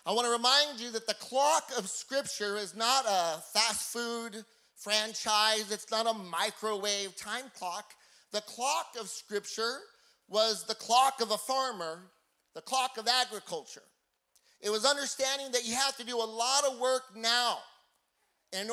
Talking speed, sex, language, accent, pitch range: 160 wpm, male, English, American, 215-255 Hz